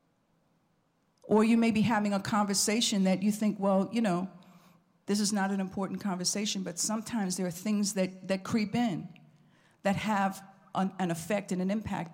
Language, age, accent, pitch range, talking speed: English, 50-69, American, 180-215 Hz, 180 wpm